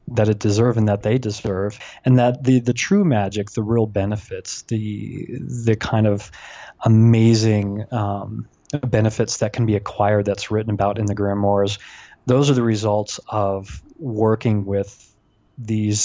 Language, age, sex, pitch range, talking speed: English, 20-39, male, 100-115 Hz, 155 wpm